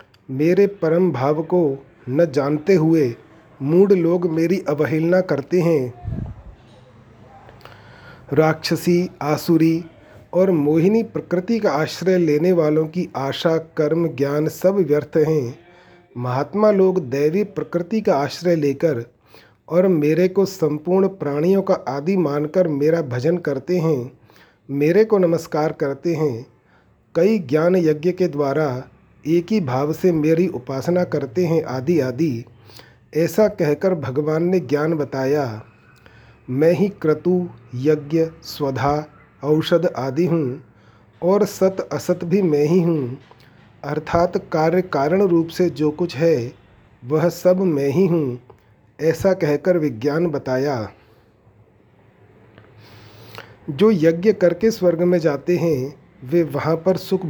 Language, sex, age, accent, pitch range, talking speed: Hindi, male, 40-59, native, 135-175 Hz, 125 wpm